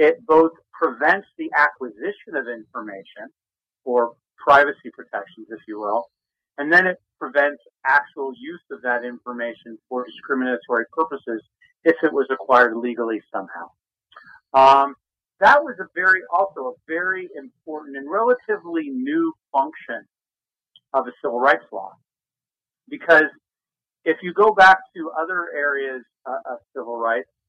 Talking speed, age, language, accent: 135 wpm, 50-69, English, American